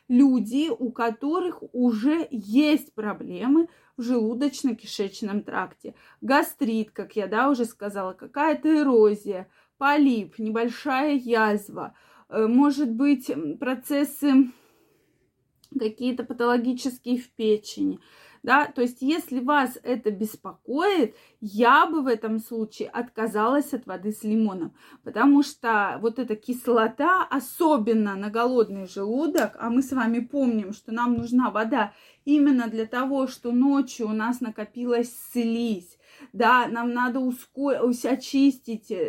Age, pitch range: 20-39, 220-275 Hz